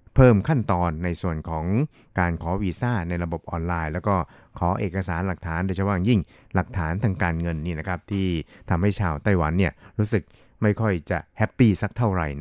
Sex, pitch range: male, 85-105 Hz